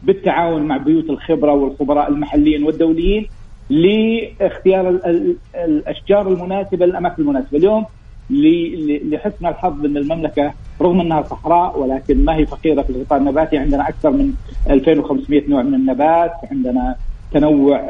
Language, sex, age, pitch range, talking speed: English, male, 50-69, 140-175 Hz, 120 wpm